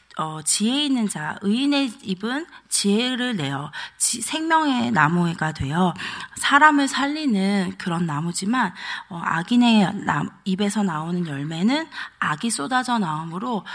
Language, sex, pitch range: Korean, female, 175-220 Hz